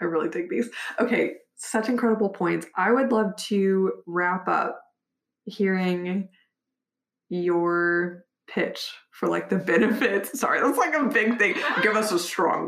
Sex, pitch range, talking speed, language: female, 170-220 Hz, 145 wpm, English